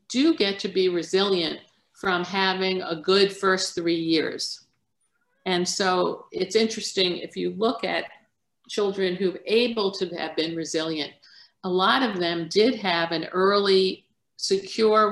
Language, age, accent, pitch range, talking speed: English, 50-69, American, 170-195 Hz, 145 wpm